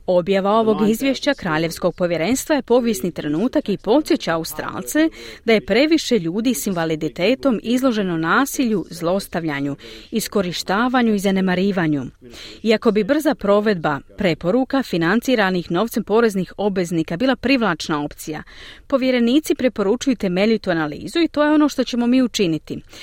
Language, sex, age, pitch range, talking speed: Croatian, female, 40-59, 165-250 Hz, 120 wpm